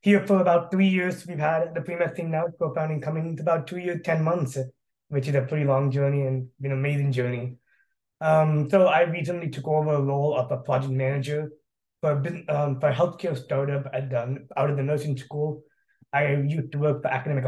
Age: 20-39